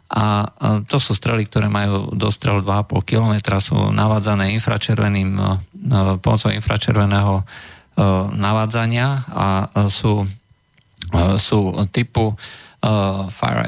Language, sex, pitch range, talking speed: Slovak, male, 95-115 Hz, 90 wpm